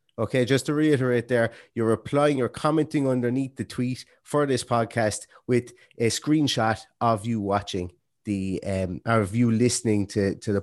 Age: 30-49